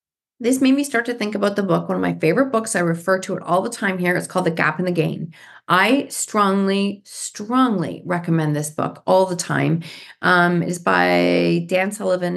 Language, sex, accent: English, female, American